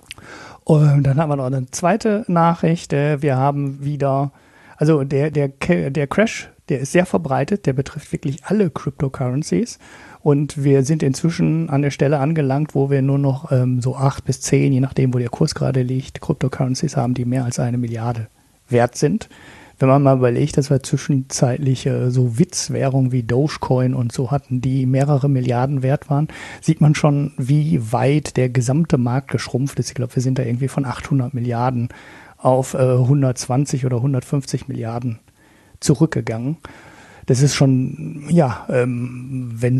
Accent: German